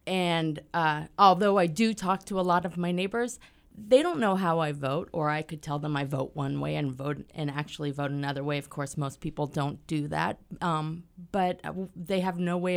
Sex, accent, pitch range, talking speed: female, American, 150-185 Hz, 220 wpm